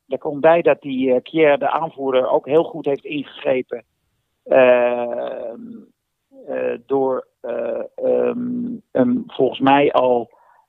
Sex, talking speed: male, 140 wpm